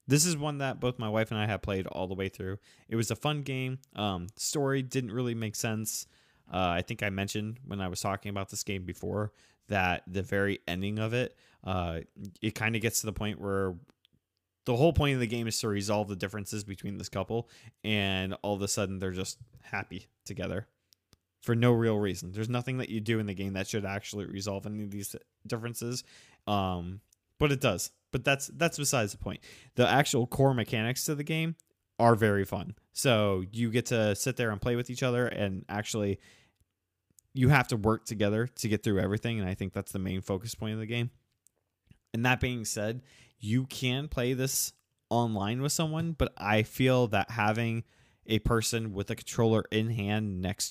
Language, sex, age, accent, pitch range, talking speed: English, male, 20-39, American, 100-120 Hz, 205 wpm